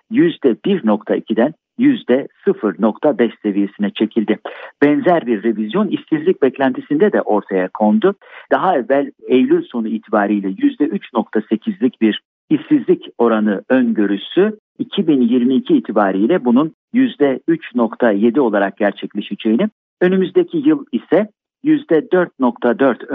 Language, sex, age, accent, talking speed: Turkish, male, 50-69, native, 85 wpm